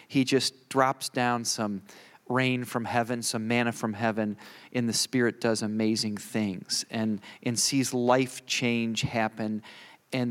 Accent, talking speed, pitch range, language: American, 145 wpm, 105-125 Hz, English